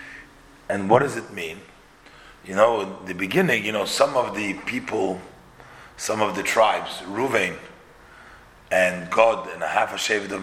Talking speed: 150 wpm